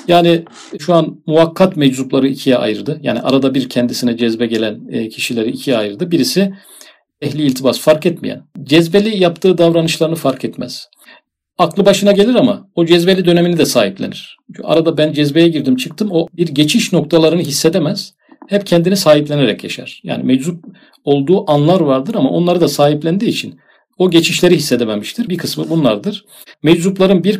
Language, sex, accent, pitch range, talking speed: Turkish, male, native, 145-185 Hz, 145 wpm